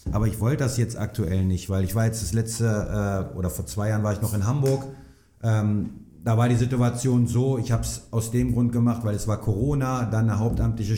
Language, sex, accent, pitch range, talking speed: German, male, German, 105-120 Hz, 235 wpm